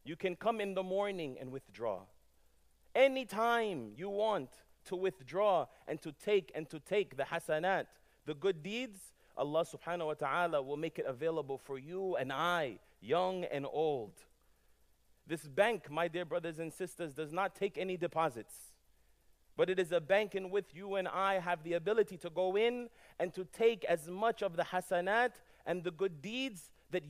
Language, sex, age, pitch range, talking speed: English, male, 30-49, 150-195 Hz, 175 wpm